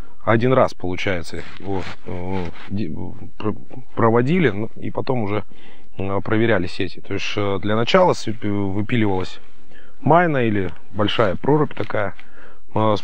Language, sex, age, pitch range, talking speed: Russian, male, 20-39, 95-115 Hz, 95 wpm